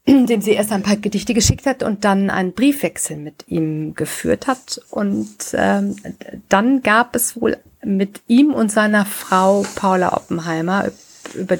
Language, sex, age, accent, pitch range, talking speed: German, female, 50-69, German, 175-220 Hz, 155 wpm